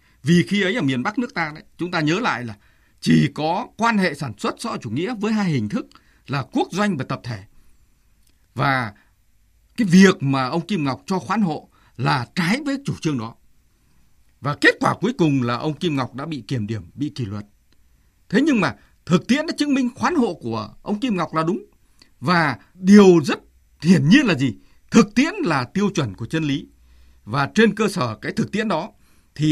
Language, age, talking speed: Vietnamese, 60-79, 215 wpm